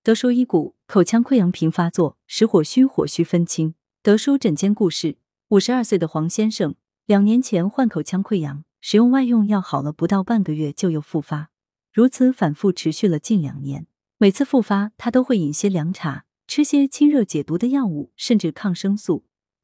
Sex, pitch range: female, 165-230 Hz